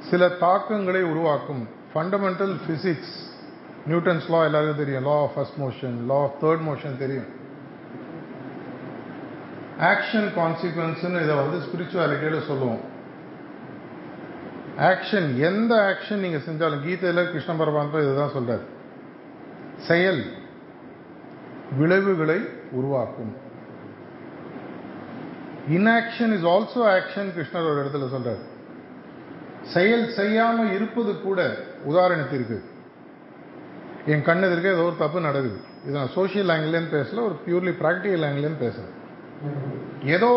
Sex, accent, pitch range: male, native, 150-185 Hz